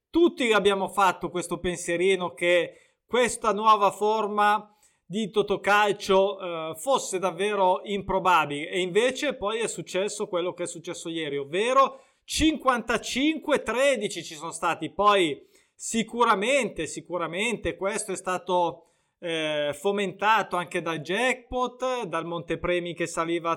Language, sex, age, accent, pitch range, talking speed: Italian, male, 20-39, native, 180-235 Hz, 110 wpm